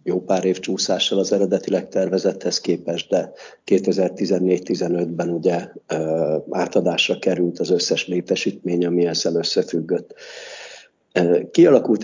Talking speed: 100 wpm